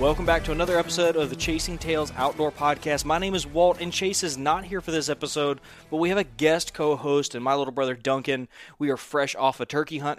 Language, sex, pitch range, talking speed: English, male, 130-155 Hz, 240 wpm